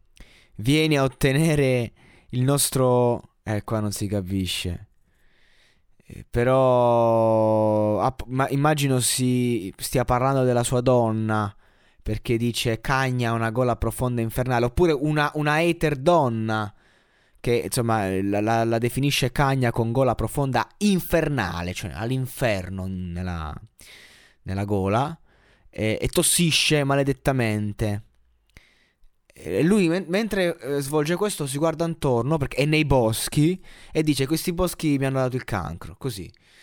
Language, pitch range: Italian, 110-145 Hz